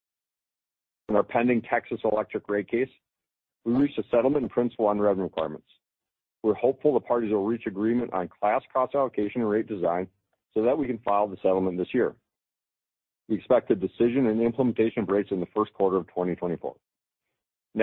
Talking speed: 180 wpm